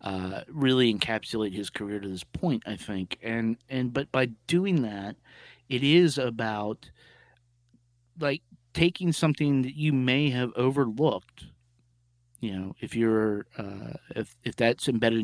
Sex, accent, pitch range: male, American, 105-135 Hz